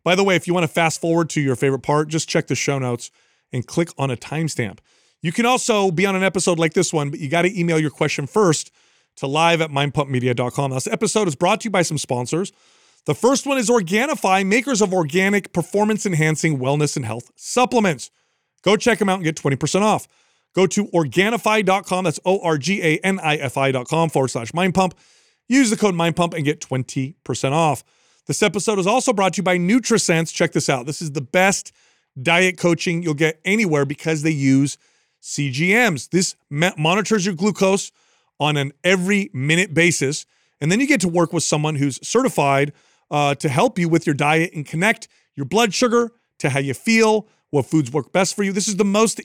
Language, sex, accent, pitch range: English, male, American, 150-195 Hz